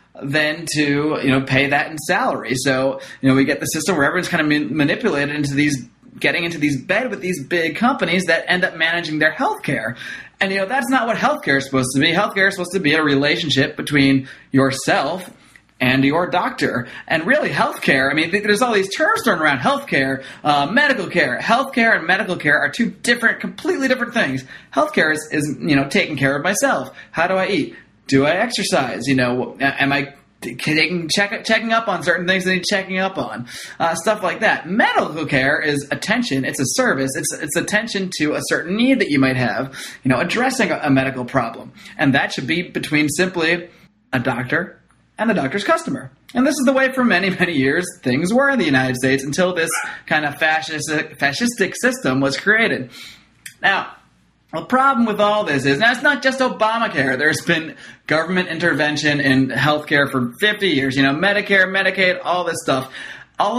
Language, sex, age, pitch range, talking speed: English, male, 30-49, 140-205 Hz, 200 wpm